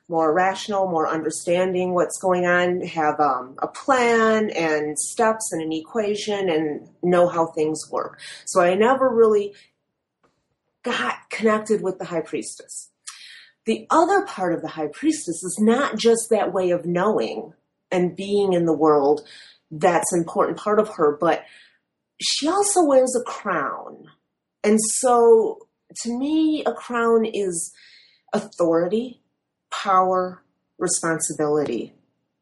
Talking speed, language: 135 wpm, English